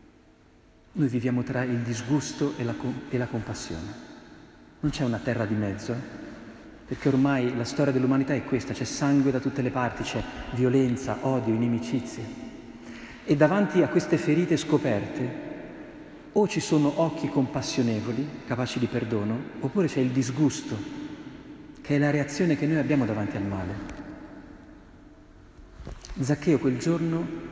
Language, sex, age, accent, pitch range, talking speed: Italian, male, 40-59, native, 120-155 Hz, 135 wpm